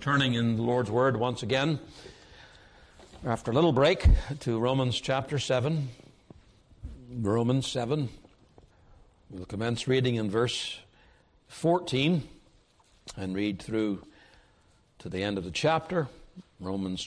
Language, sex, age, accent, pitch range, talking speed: English, male, 60-79, American, 105-140 Hz, 115 wpm